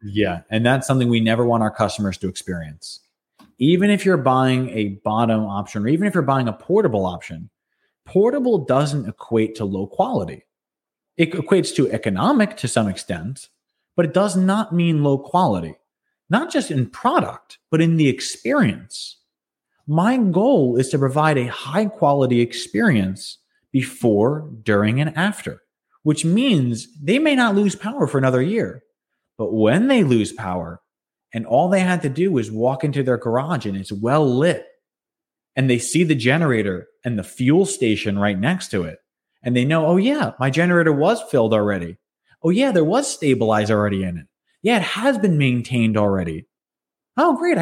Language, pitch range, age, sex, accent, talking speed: English, 110-175 Hz, 30-49, male, American, 170 wpm